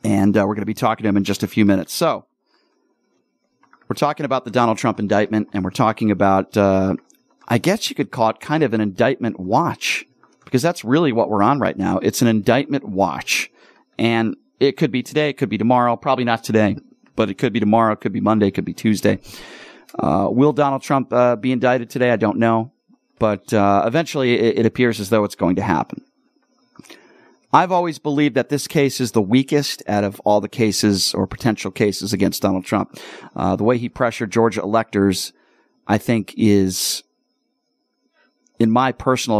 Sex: male